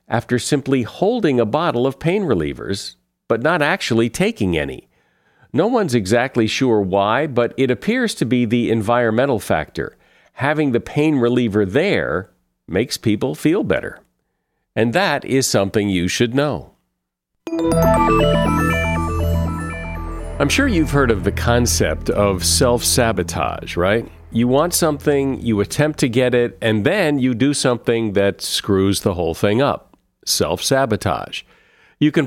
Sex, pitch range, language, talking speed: male, 100-135 Hz, English, 140 wpm